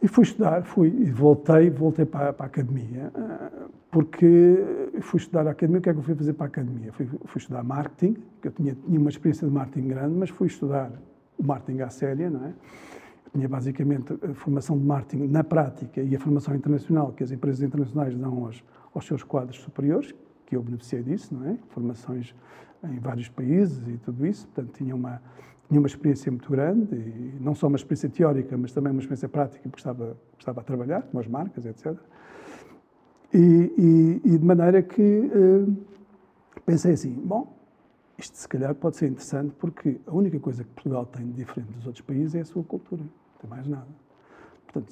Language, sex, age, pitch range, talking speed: Portuguese, male, 50-69, 130-165 Hz, 200 wpm